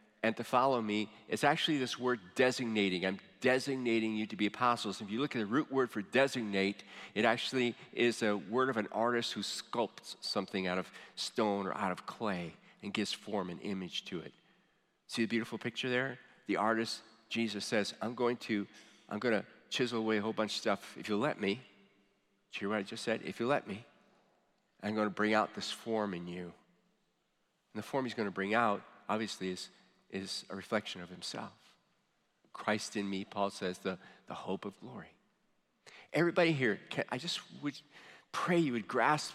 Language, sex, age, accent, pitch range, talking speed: English, male, 40-59, American, 105-125 Hz, 200 wpm